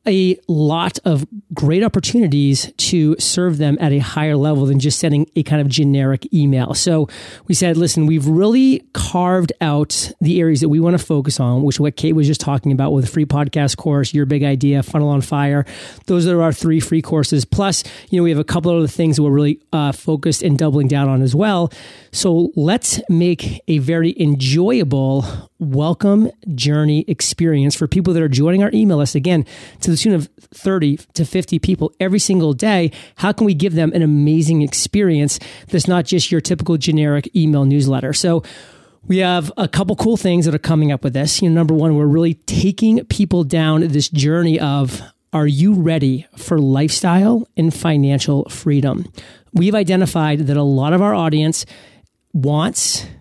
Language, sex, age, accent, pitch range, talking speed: English, male, 30-49, American, 145-175 Hz, 190 wpm